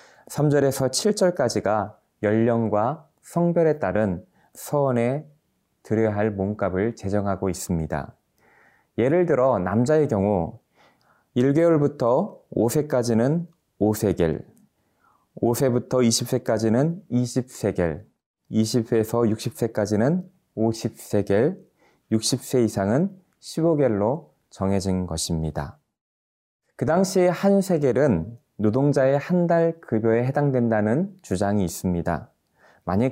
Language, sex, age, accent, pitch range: Korean, male, 20-39, native, 100-140 Hz